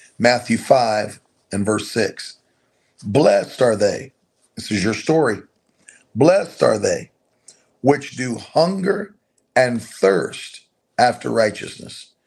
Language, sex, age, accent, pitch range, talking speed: English, male, 40-59, American, 110-135 Hz, 110 wpm